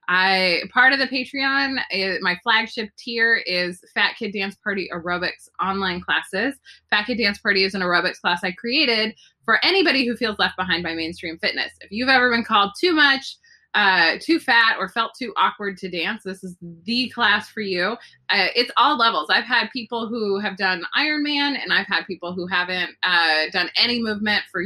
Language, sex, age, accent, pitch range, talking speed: English, female, 20-39, American, 180-245 Hz, 190 wpm